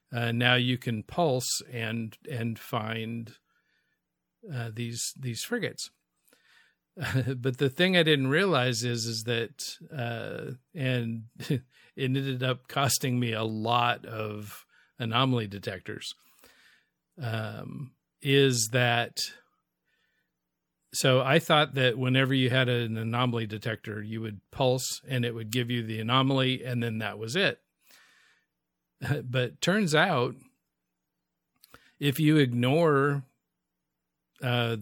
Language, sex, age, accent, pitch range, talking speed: English, male, 50-69, American, 115-135 Hz, 120 wpm